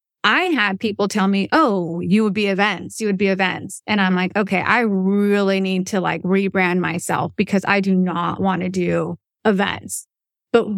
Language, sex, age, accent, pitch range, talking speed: English, female, 30-49, American, 195-230 Hz, 190 wpm